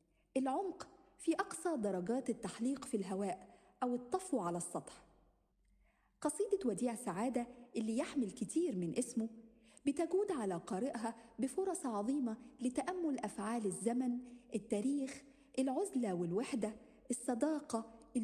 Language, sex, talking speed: Arabic, female, 100 wpm